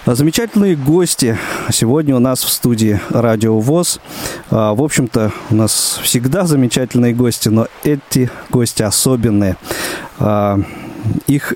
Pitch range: 110-140 Hz